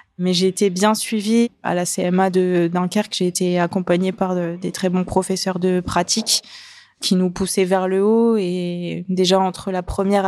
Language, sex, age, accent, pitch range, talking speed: French, female, 20-39, French, 180-205 Hz, 185 wpm